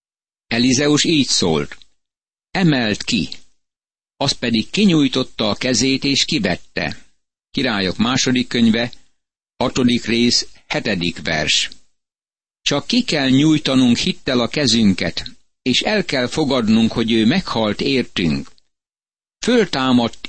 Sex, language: male, Hungarian